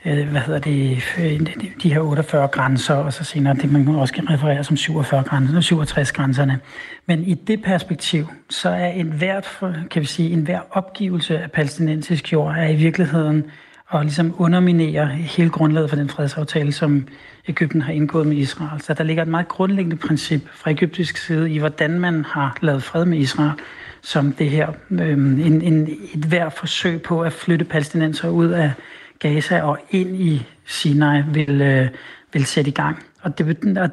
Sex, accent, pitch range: male, native, 150-170 Hz